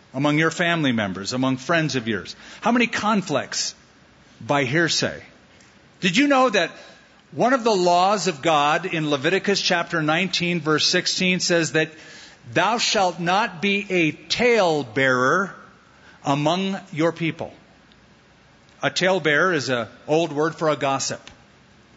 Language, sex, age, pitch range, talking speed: English, male, 50-69, 140-185 Hz, 140 wpm